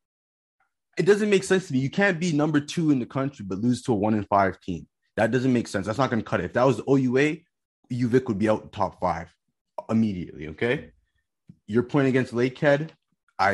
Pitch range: 95-130 Hz